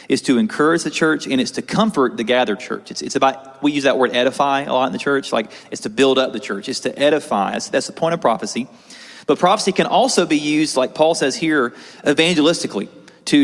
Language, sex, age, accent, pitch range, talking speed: English, male, 30-49, American, 125-165 Hz, 235 wpm